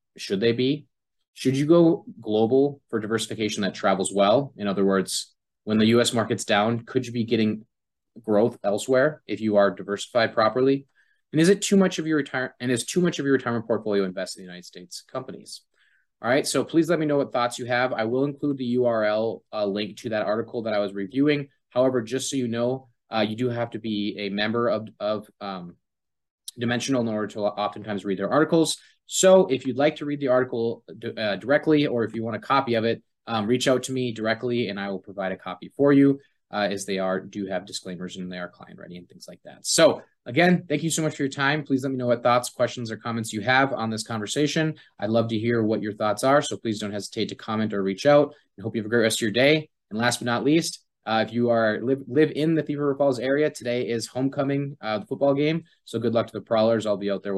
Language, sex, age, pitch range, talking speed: English, male, 20-39, 105-140 Hz, 245 wpm